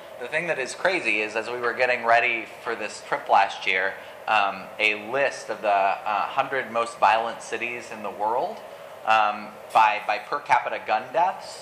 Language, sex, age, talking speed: English, male, 30-49, 185 wpm